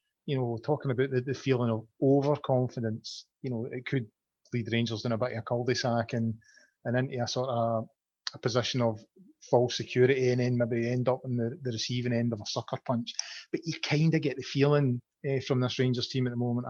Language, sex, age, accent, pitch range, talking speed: English, male, 30-49, British, 120-135 Hz, 225 wpm